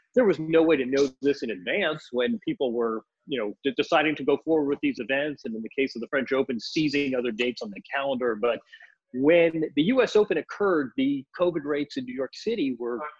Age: 40-59